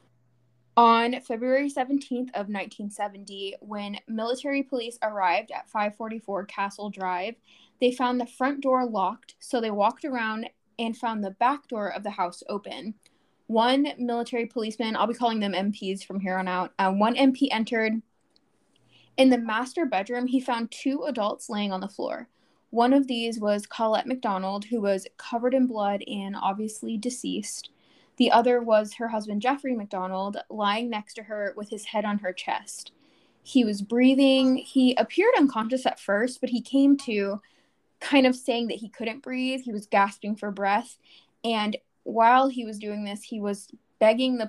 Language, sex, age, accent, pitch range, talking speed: English, female, 10-29, American, 205-250 Hz, 170 wpm